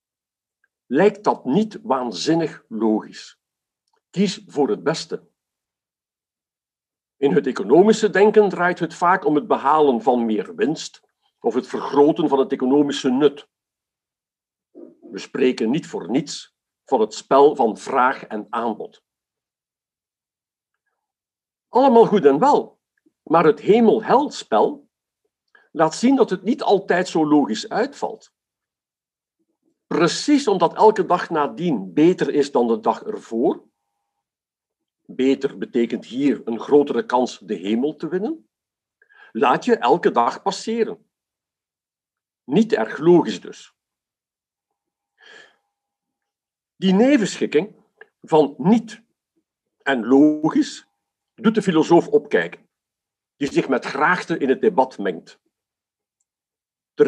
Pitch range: 145-230 Hz